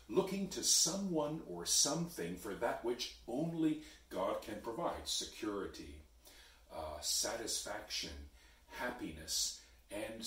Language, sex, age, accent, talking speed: English, female, 50-69, American, 100 wpm